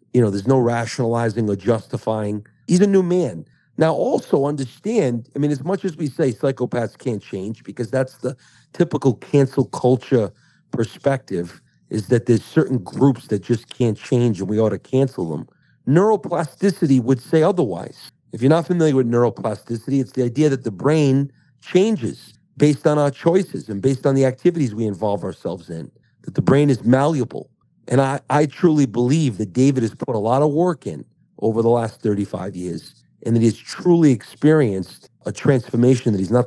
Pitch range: 110-140 Hz